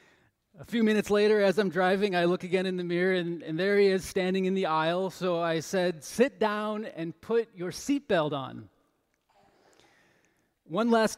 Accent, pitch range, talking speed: American, 175-215 Hz, 185 wpm